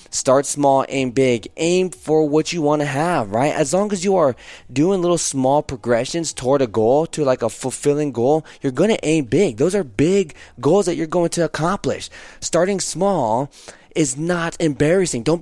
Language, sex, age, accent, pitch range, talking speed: English, male, 20-39, American, 130-170 Hz, 190 wpm